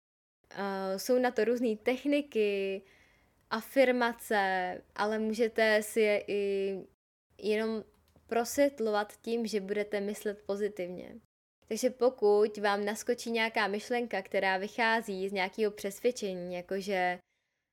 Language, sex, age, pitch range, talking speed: Czech, female, 10-29, 195-235 Hz, 105 wpm